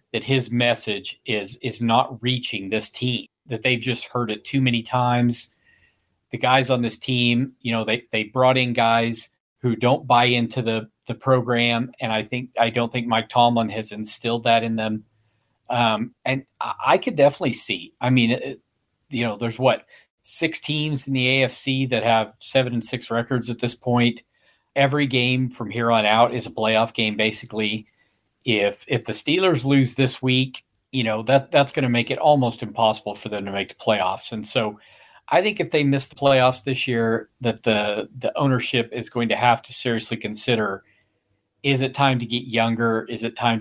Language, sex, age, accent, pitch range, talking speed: English, male, 40-59, American, 115-130 Hz, 195 wpm